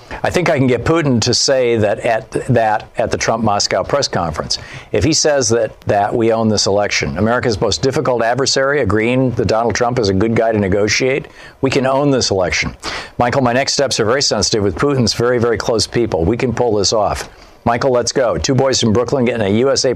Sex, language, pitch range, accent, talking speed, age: male, English, 100-125 Hz, American, 220 wpm, 50-69